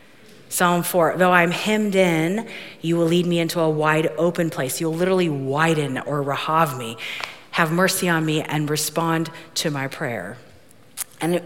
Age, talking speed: 40-59, 160 wpm